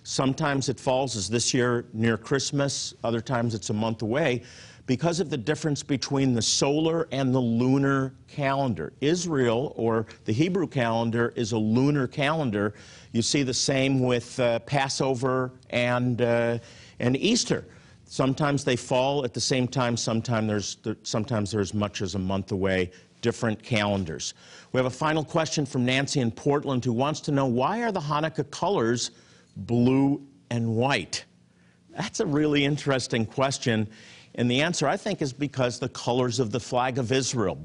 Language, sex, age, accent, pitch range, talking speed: English, male, 50-69, American, 115-140 Hz, 165 wpm